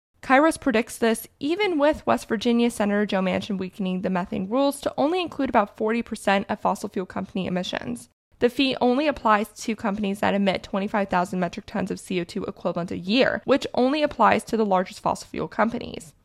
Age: 20-39